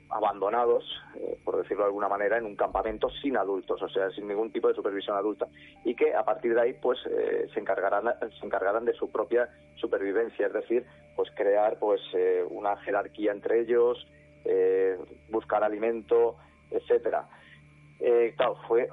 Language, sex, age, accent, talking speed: Spanish, male, 30-49, Spanish, 165 wpm